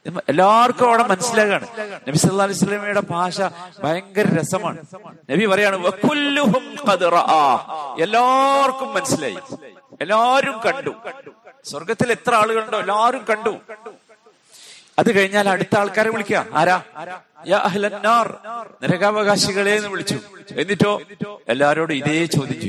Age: 50-69